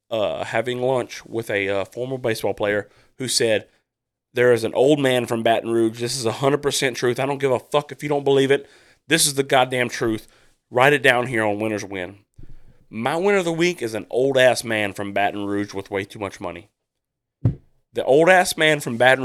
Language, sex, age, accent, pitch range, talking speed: English, male, 30-49, American, 110-135 Hz, 220 wpm